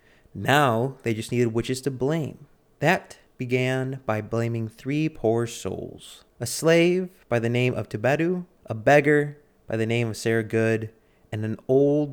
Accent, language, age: American, English, 30-49